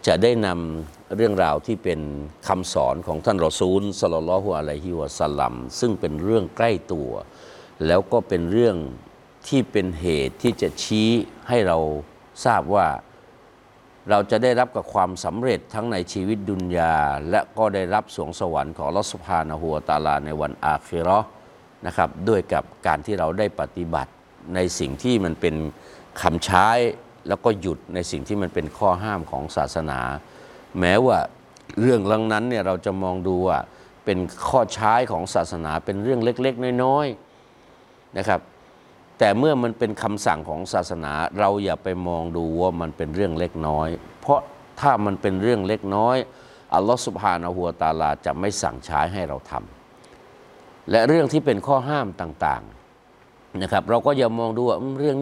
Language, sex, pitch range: Thai, male, 85-115 Hz